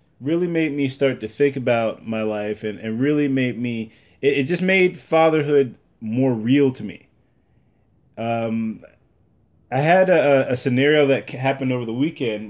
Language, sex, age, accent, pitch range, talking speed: English, male, 20-39, American, 110-160 Hz, 165 wpm